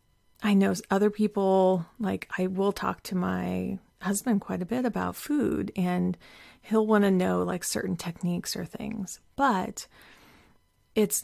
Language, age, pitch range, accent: English, 30-49, 180-220 Hz, American